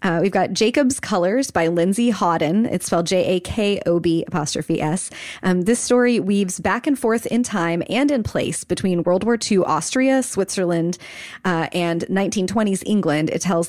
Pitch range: 165-200 Hz